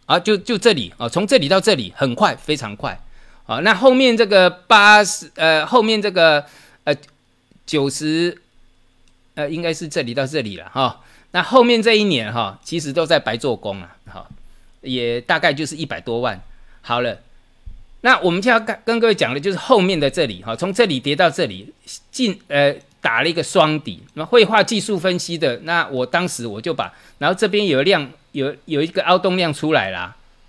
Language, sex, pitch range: Chinese, male, 125-190 Hz